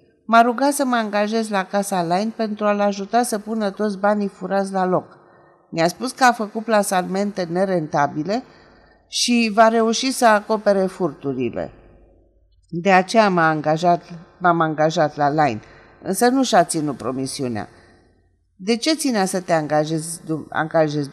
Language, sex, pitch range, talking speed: Romanian, female, 160-210 Hz, 140 wpm